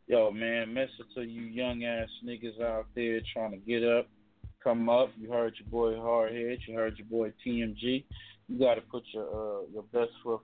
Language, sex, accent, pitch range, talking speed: English, male, American, 110-130 Hz, 195 wpm